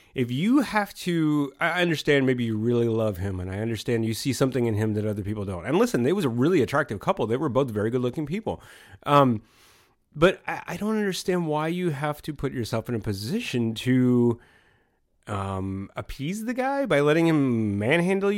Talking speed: 200 wpm